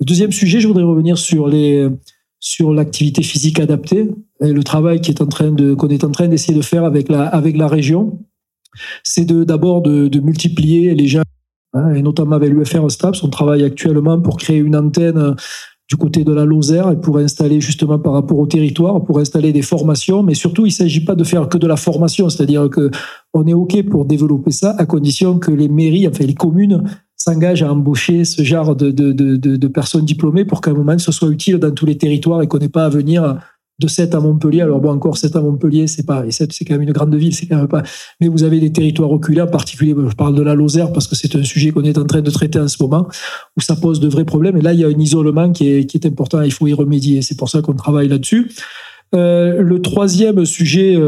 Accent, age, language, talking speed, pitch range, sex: French, 40-59, French, 240 wpm, 150-170 Hz, male